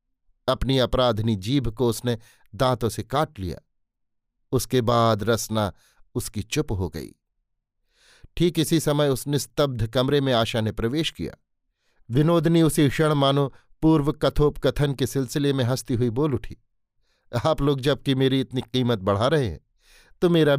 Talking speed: 150 wpm